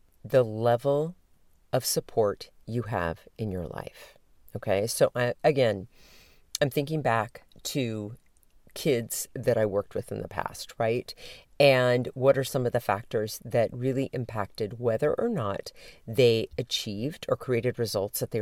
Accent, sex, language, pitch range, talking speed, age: American, female, English, 110-145 Hz, 145 wpm, 40-59